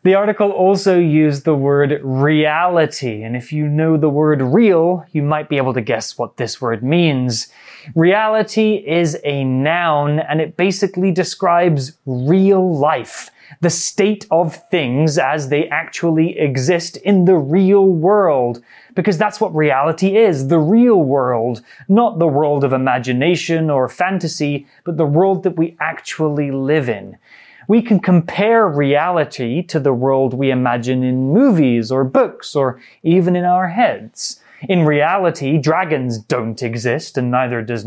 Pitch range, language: 145-190 Hz, Chinese